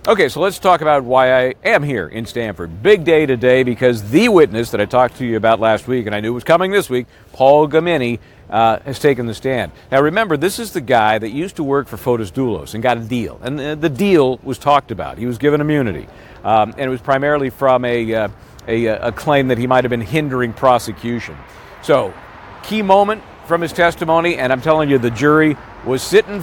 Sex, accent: male, American